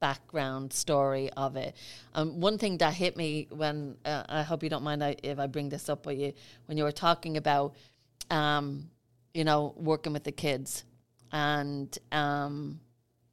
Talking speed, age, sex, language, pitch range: 170 wpm, 30-49, female, English, 135-160 Hz